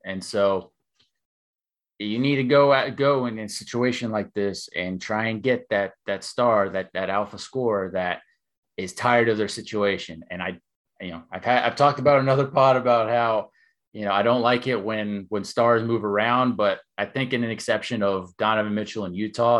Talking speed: 200 wpm